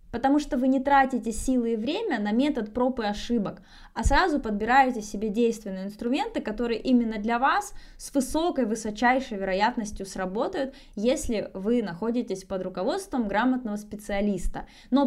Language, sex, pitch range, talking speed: Russian, female, 210-275 Hz, 145 wpm